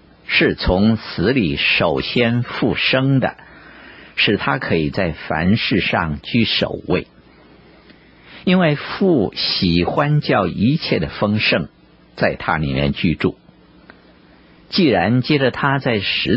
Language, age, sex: Chinese, 50-69, male